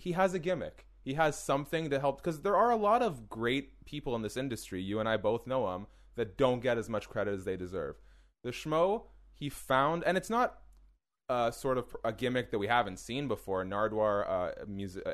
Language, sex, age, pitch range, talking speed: English, male, 20-39, 100-140 Hz, 220 wpm